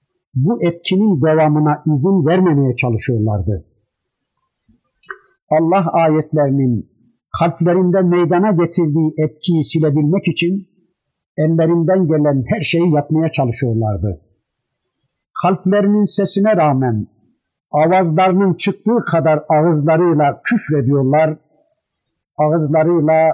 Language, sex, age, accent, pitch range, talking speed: Turkish, male, 60-79, native, 145-185 Hz, 75 wpm